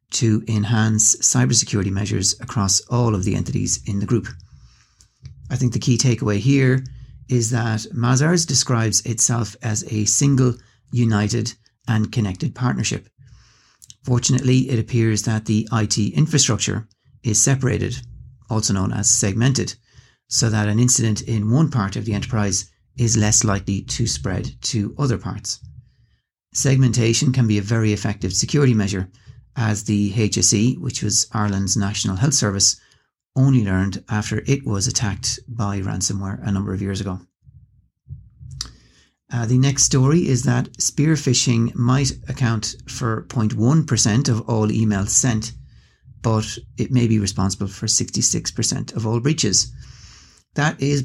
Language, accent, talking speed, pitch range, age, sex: English, Irish, 140 wpm, 105-125 Hz, 40-59, male